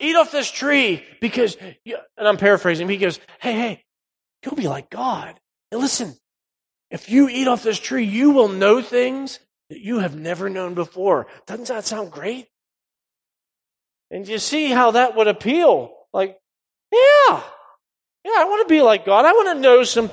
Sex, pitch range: male, 195-265 Hz